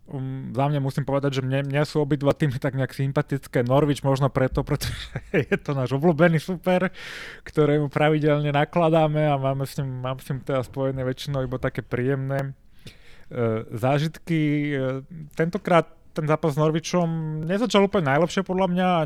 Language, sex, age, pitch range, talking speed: Slovak, male, 20-39, 135-160 Hz, 165 wpm